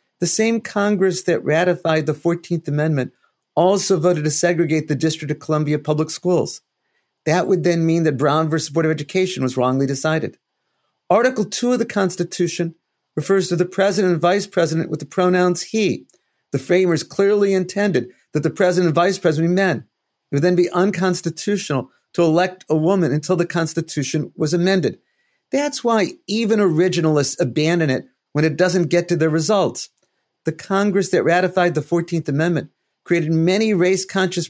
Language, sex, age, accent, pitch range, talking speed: English, male, 40-59, American, 155-190 Hz, 165 wpm